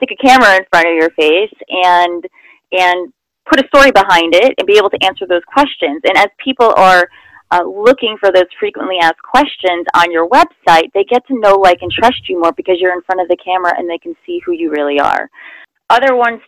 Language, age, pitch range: English, 30-49, 175-210 Hz